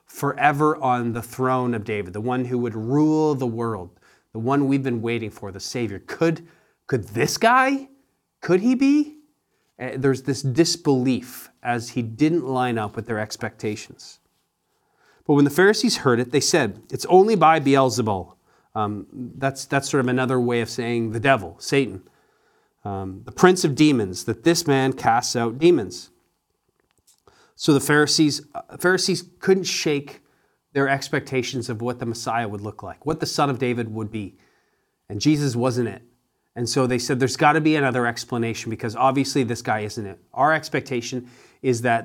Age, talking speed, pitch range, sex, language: 30-49, 170 wpm, 115-145 Hz, male, English